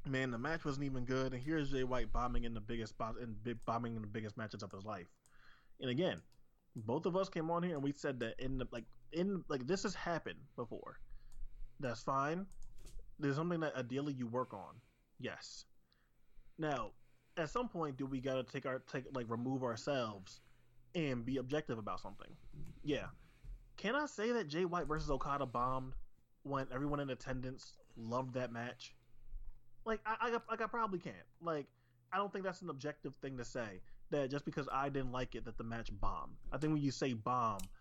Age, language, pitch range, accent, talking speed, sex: 20-39, English, 115-145 Hz, American, 200 wpm, male